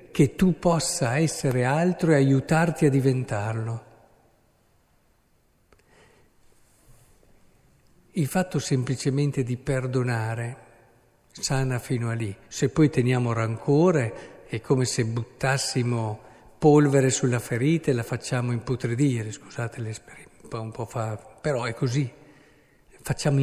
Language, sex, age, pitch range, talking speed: Italian, male, 50-69, 115-140 Hz, 105 wpm